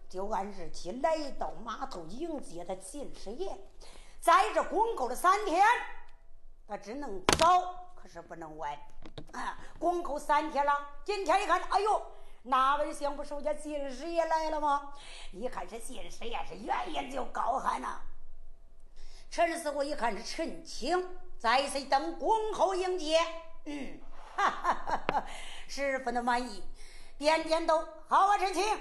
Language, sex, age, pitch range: Chinese, female, 50-69, 250-360 Hz